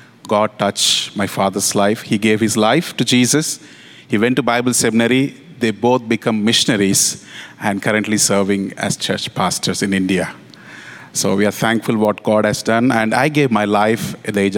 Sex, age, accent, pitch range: male, 30-49, Indian, 105-125 Hz